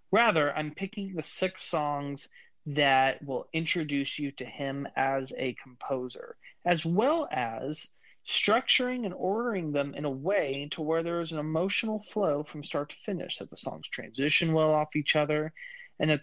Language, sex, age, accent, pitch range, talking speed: English, male, 30-49, American, 140-180 Hz, 170 wpm